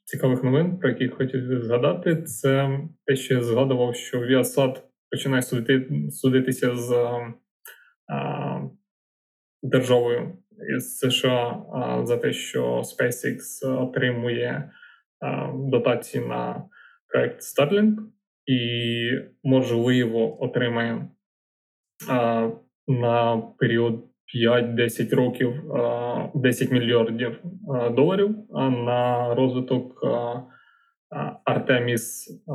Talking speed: 80 wpm